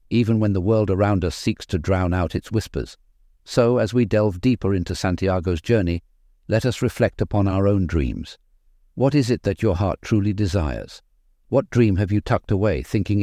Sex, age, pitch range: male, 60-79, 85-115 Hz